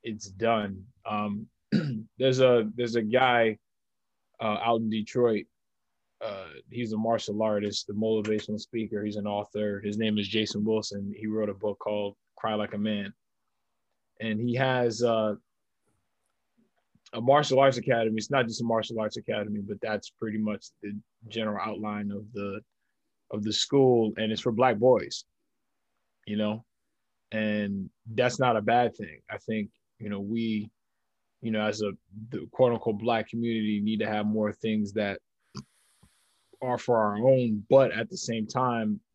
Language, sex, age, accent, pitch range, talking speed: English, male, 20-39, American, 105-115 Hz, 160 wpm